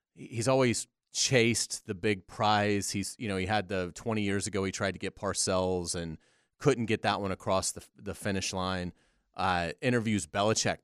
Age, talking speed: 30-49, 185 wpm